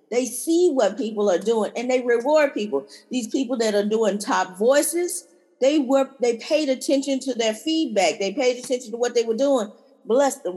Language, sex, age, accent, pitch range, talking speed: English, female, 40-59, American, 215-265 Hz, 200 wpm